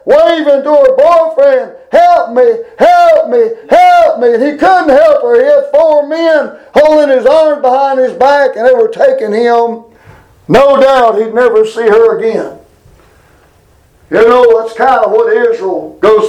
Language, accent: English, American